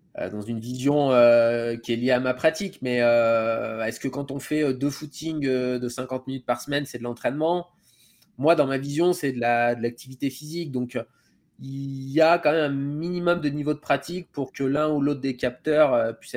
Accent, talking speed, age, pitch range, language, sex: French, 220 wpm, 20-39, 115-135 Hz, French, male